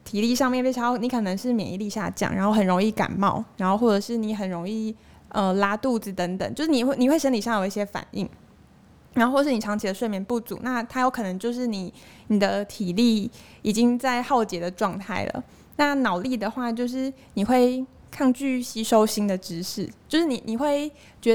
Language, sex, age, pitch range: Chinese, female, 20-39, 205-245 Hz